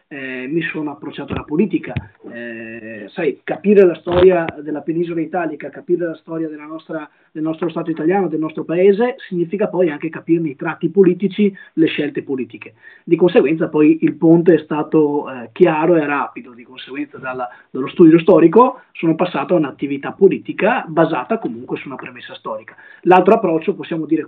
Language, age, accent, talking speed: Italian, 20-39, native, 165 wpm